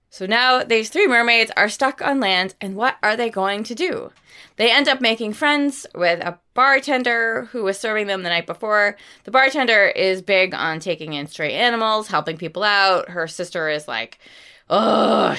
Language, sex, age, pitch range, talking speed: English, female, 20-39, 175-275 Hz, 185 wpm